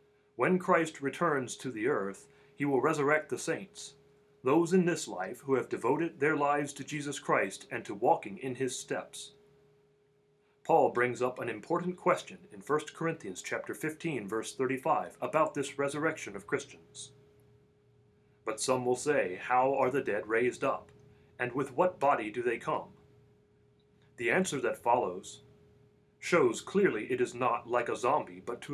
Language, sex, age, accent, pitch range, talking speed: English, male, 40-59, American, 135-160 Hz, 165 wpm